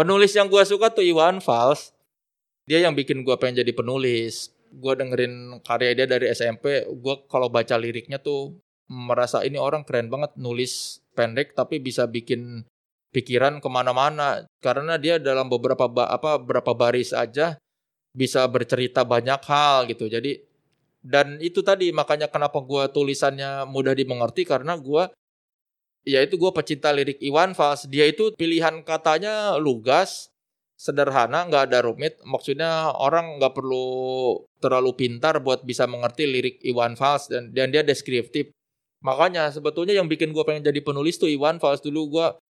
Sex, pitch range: male, 125-155 Hz